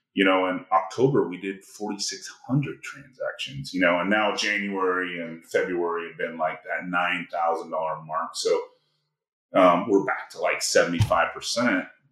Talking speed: 140 wpm